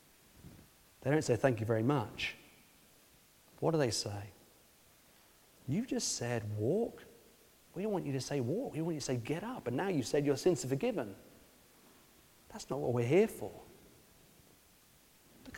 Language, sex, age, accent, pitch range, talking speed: English, male, 40-59, British, 110-150 Hz, 175 wpm